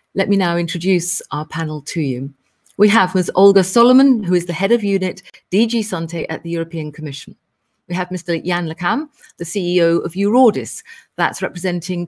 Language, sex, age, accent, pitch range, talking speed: English, female, 40-59, British, 160-205 Hz, 180 wpm